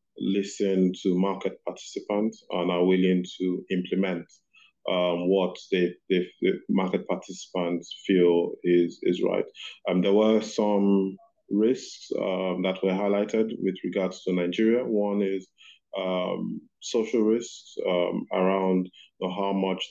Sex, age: male, 20-39